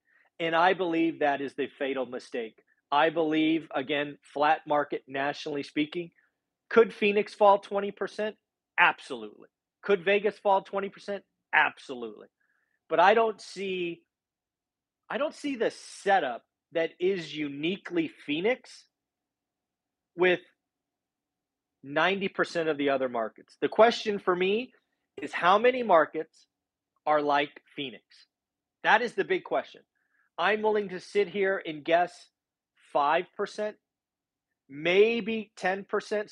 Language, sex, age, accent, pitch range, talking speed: English, male, 40-59, American, 150-205 Hz, 115 wpm